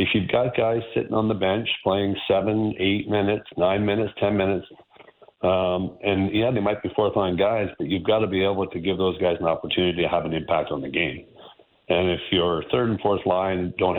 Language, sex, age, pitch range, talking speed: English, male, 50-69, 90-105 Hz, 220 wpm